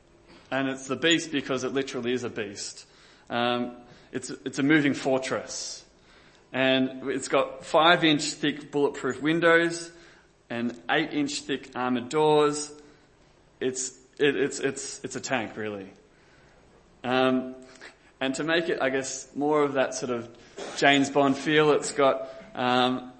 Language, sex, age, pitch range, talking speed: English, male, 20-39, 125-145 Hz, 135 wpm